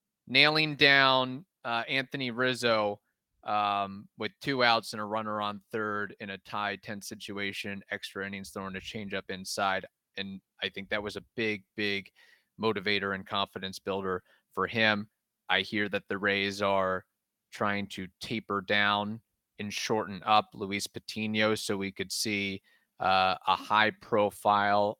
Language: English